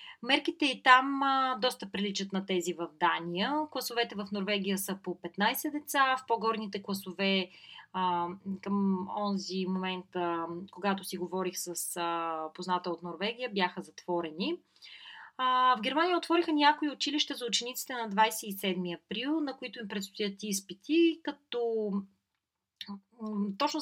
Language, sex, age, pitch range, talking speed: Bulgarian, female, 30-49, 190-250 Hz, 135 wpm